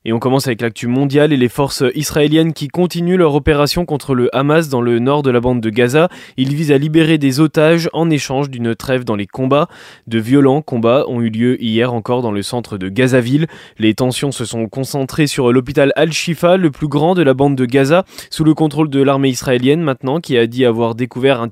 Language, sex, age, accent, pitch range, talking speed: French, male, 20-39, French, 120-150 Hz, 225 wpm